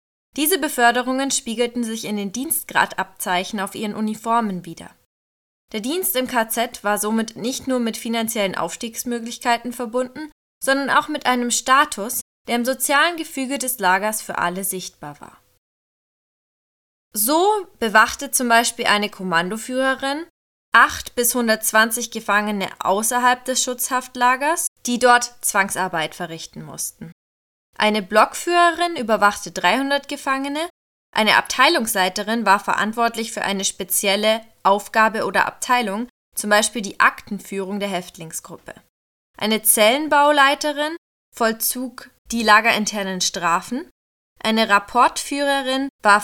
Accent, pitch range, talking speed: German, 200-255 Hz, 110 wpm